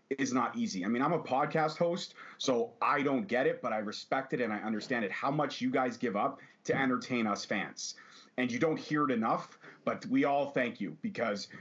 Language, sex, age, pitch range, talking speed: English, male, 30-49, 110-150 Hz, 230 wpm